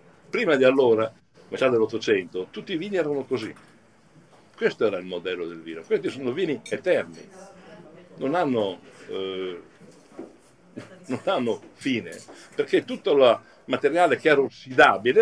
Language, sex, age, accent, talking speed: English, male, 60-79, Italian, 130 wpm